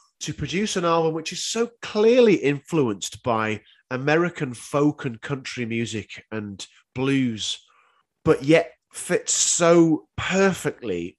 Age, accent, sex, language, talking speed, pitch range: 30-49, British, male, English, 120 wpm, 120-180 Hz